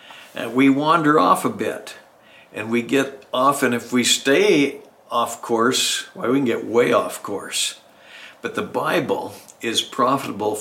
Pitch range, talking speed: 115-130 Hz, 165 wpm